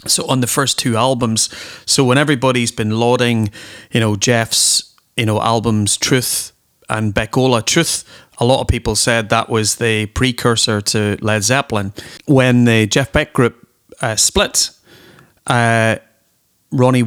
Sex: male